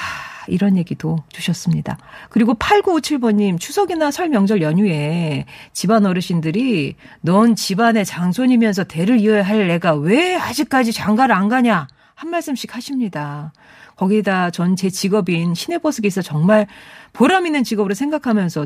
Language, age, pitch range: Korean, 40-59, 175-250 Hz